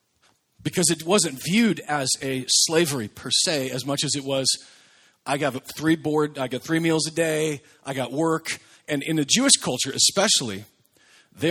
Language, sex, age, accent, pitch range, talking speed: English, male, 40-59, American, 125-160 Hz, 175 wpm